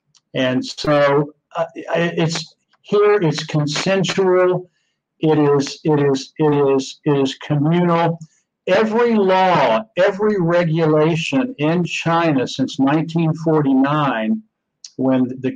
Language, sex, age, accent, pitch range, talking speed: English, male, 60-79, American, 135-170 Hz, 100 wpm